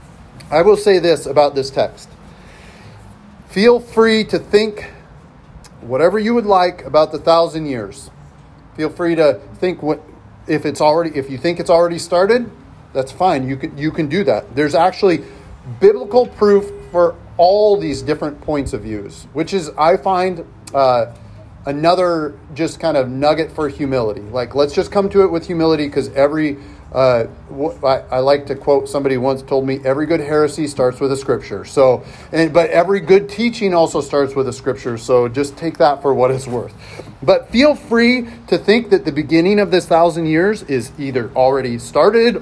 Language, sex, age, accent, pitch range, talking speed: English, male, 40-59, American, 135-190 Hz, 175 wpm